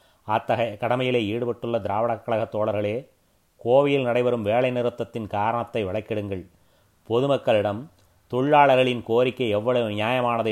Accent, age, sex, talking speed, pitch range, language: native, 30-49, male, 90 wpm, 100-125 Hz, Tamil